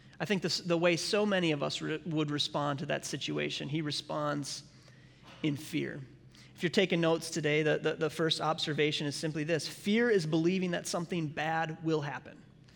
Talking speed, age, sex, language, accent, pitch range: 190 wpm, 30-49, male, English, American, 150-185 Hz